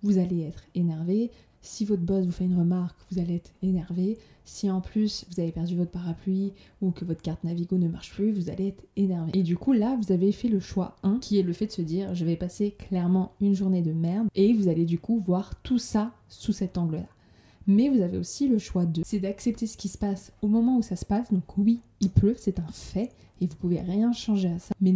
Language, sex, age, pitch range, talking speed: French, female, 20-39, 180-215 Hz, 250 wpm